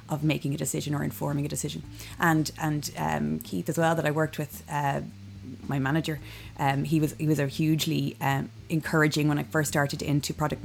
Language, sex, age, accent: Italian, female, 30-49, Irish